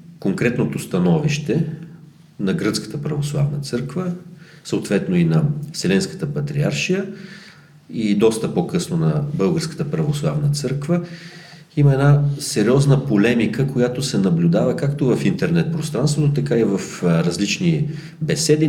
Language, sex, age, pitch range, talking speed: Bulgarian, male, 40-59, 145-165 Hz, 110 wpm